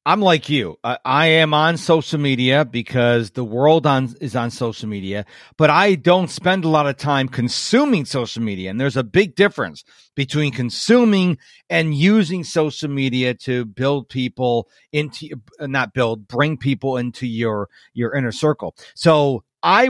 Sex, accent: male, American